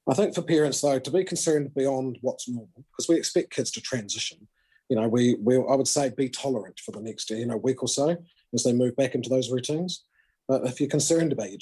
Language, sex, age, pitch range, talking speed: English, male, 40-59, 115-135 Hz, 245 wpm